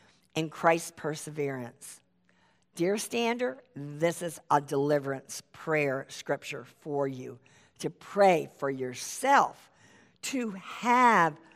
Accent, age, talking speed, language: American, 50-69, 100 wpm, English